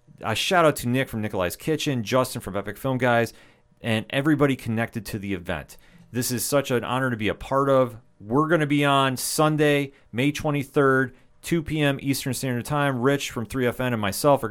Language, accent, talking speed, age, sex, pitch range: English, American, 200 wpm, 30-49, male, 105-125 Hz